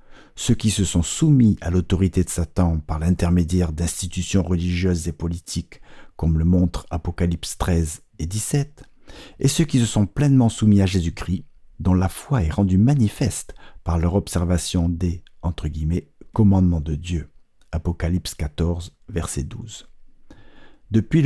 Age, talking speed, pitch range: 50-69, 145 wpm, 85-105 Hz